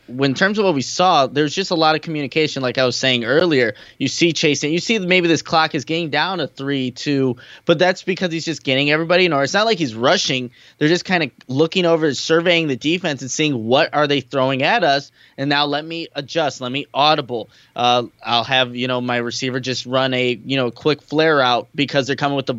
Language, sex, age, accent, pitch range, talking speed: English, male, 20-39, American, 135-180 Hz, 240 wpm